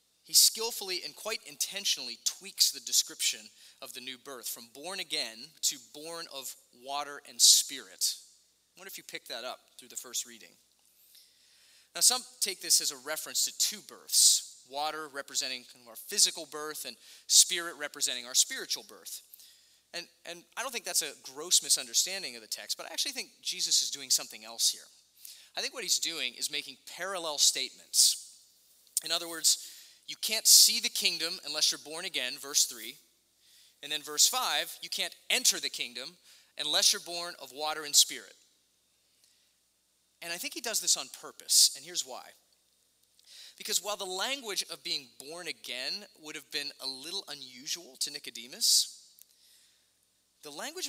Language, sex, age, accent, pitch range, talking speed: English, male, 30-49, American, 130-180 Hz, 170 wpm